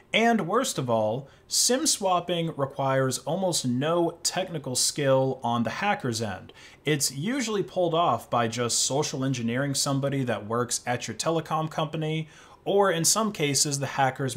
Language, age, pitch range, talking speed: English, 30-49, 115-155 Hz, 150 wpm